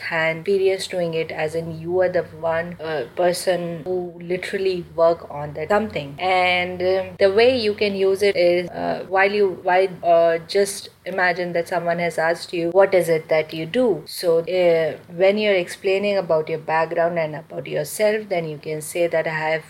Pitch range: 165-190 Hz